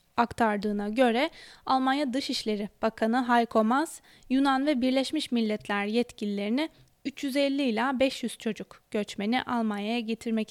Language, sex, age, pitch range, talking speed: Turkish, female, 10-29, 225-275 Hz, 110 wpm